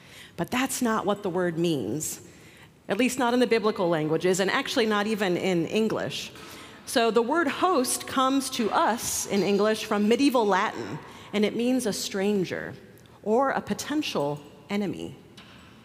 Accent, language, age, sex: American, English, 40-59, female